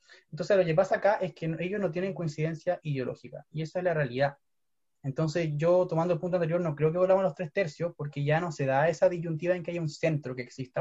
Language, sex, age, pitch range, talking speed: Spanish, male, 20-39, 145-180 Hz, 250 wpm